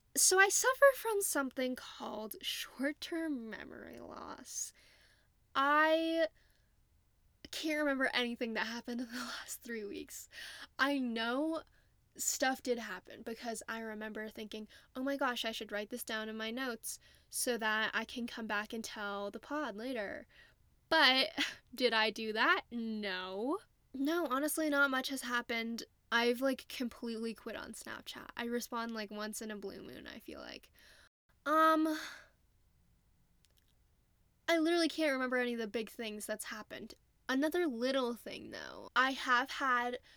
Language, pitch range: English, 225-275 Hz